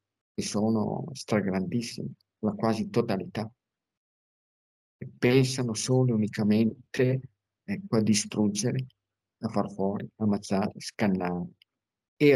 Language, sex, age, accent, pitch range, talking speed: Italian, male, 50-69, native, 110-135 Hz, 90 wpm